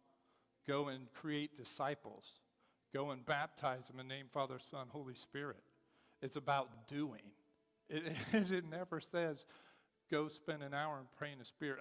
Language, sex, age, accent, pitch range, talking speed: English, male, 40-59, American, 135-160 Hz, 160 wpm